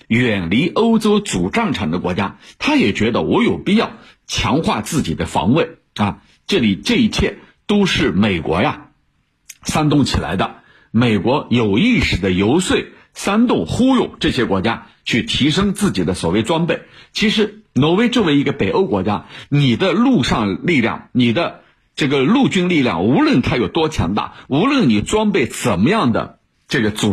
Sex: male